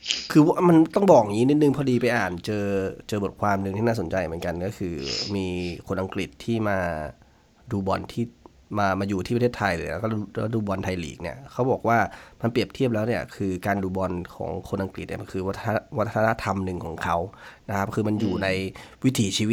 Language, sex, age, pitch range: Thai, male, 20-39, 95-120 Hz